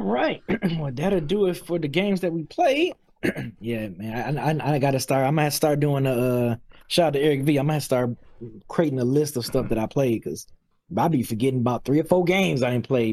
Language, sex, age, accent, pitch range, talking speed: English, male, 20-39, American, 115-155 Hz, 240 wpm